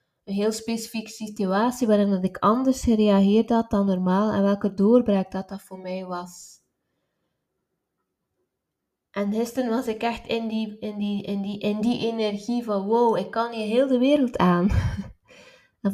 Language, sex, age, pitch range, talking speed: Dutch, female, 20-39, 190-215 Hz, 160 wpm